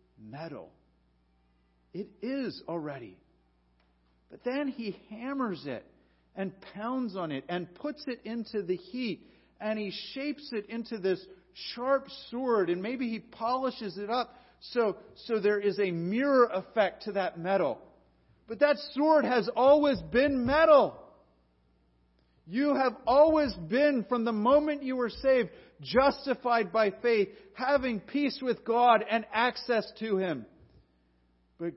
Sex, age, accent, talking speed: male, 40-59, American, 135 wpm